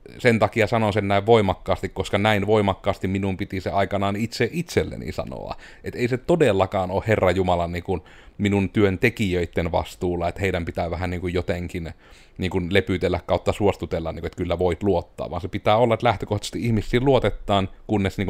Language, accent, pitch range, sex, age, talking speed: Finnish, native, 95-120 Hz, male, 30-49, 155 wpm